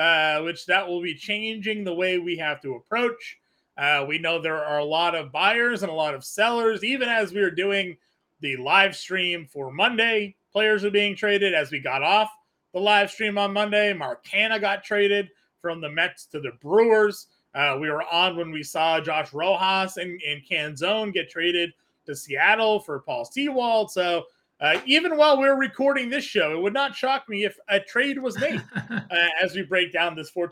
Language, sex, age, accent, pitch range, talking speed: English, male, 30-49, American, 160-210 Hz, 200 wpm